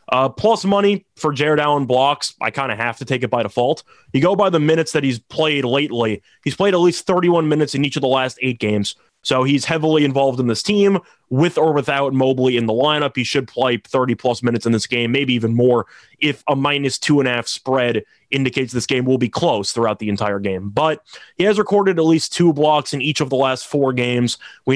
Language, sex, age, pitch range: English, male, 20-39, 125-155 Hz